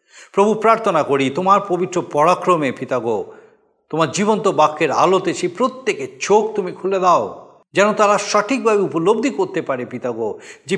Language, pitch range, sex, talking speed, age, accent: Bengali, 150-215 Hz, male, 140 wpm, 50-69, native